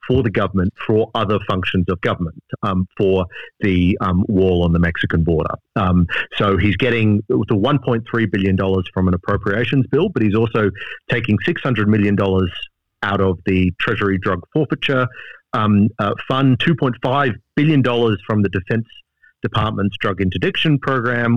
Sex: male